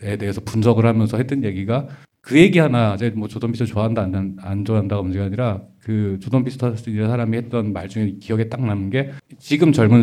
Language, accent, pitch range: English, Korean, 105-135 Hz